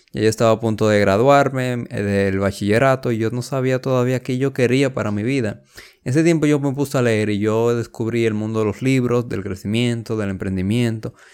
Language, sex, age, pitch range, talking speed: Spanish, male, 20-39, 105-130 Hz, 200 wpm